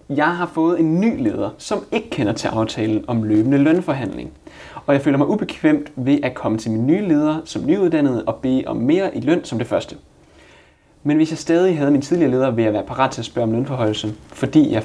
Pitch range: 110-150 Hz